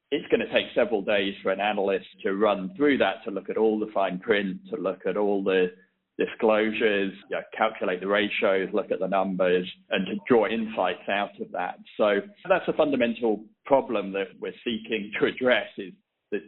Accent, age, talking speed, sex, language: British, 40-59, 190 wpm, male, English